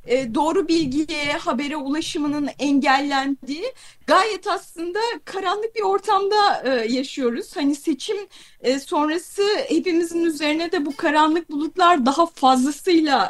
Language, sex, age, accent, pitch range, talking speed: Turkish, female, 30-49, native, 265-380 Hz, 115 wpm